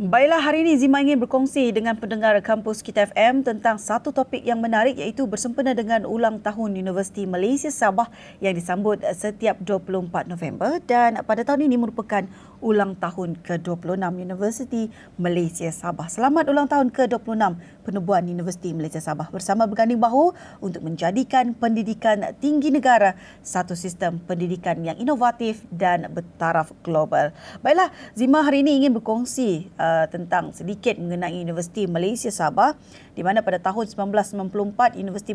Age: 30-49